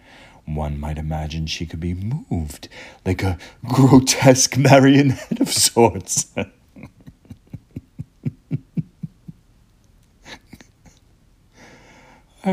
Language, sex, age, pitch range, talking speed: English, male, 40-59, 80-110 Hz, 60 wpm